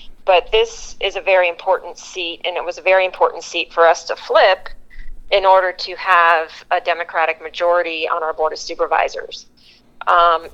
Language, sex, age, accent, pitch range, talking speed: English, female, 30-49, American, 165-195 Hz, 175 wpm